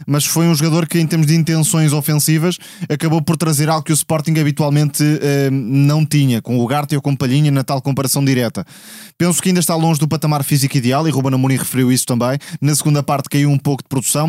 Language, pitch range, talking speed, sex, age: Portuguese, 140-165 Hz, 230 wpm, male, 20-39